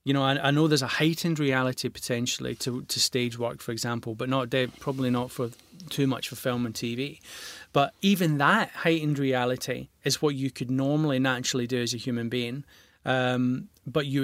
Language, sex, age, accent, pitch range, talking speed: English, male, 30-49, British, 125-155 Hz, 195 wpm